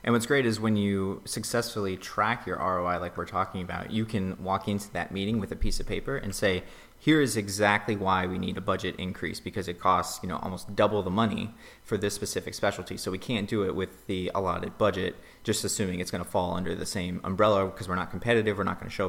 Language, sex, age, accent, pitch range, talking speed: English, male, 30-49, American, 95-110 Hz, 240 wpm